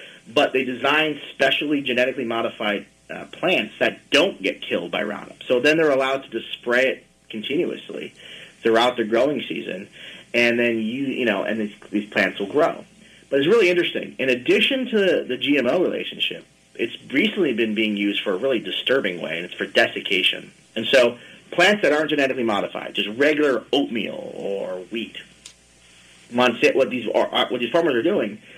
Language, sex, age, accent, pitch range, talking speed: English, male, 30-49, American, 110-150 Hz, 175 wpm